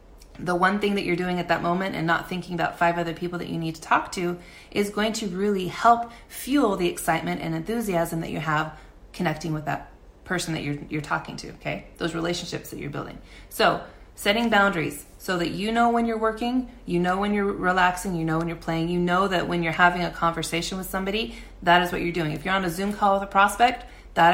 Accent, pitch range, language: American, 165-195 Hz, English